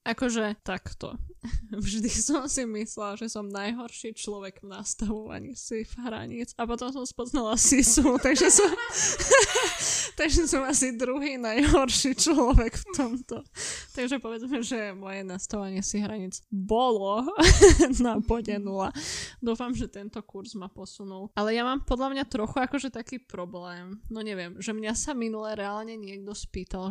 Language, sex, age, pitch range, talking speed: Slovak, female, 20-39, 200-245 Hz, 140 wpm